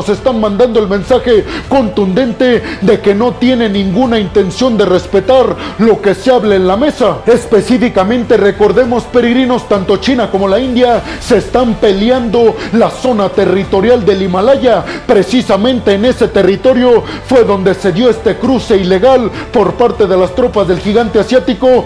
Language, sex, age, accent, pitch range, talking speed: Spanish, male, 40-59, Mexican, 200-245 Hz, 150 wpm